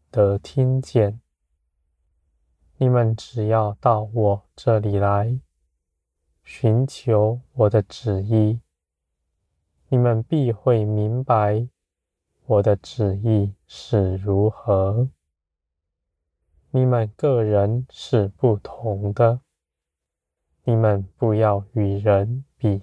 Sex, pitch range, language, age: male, 75-115 Hz, Chinese, 20-39